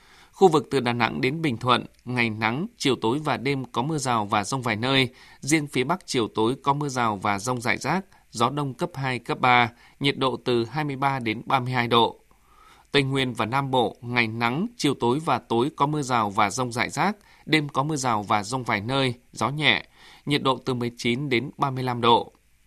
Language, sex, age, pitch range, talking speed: Vietnamese, male, 20-39, 120-145 Hz, 215 wpm